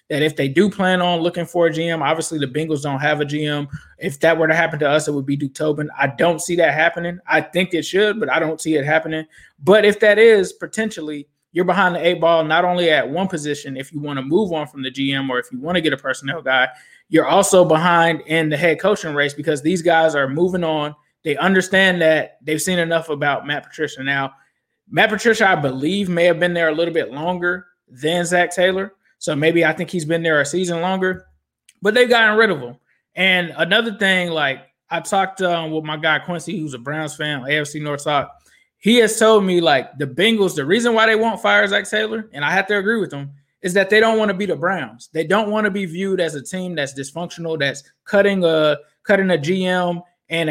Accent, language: American, English